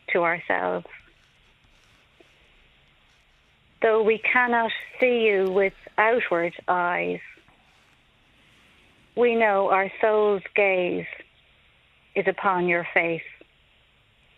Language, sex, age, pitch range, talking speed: English, female, 40-59, 185-225 Hz, 80 wpm